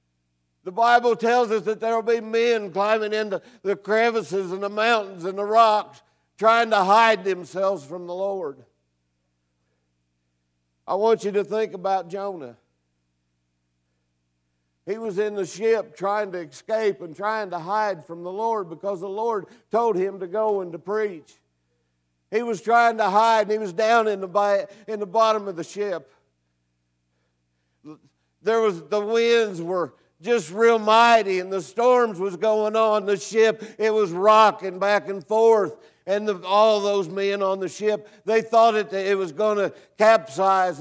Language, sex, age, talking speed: English, male, 60-79, 165 wpm